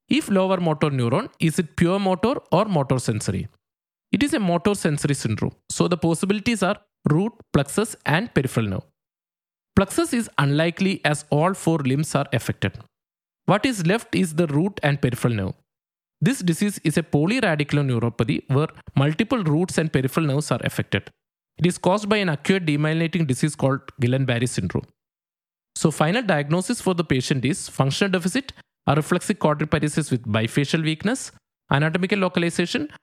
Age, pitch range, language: 20-39, 130-180 Hz, English